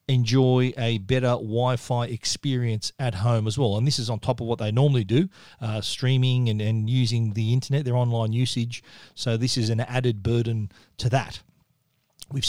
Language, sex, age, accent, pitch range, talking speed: English, male, 40-59, Australian, 115-130 Hz, 185 wpm